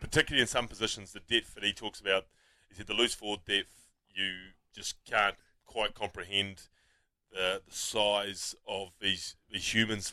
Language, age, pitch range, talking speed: English, 20-39, 95-110 Hz, 165 wpm